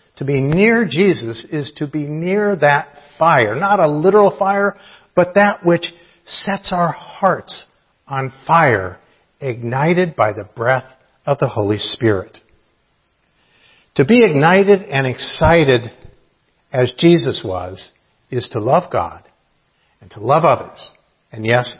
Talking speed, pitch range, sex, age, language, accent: 130 wpm, 120-165 Hz, male, 50-69, English, American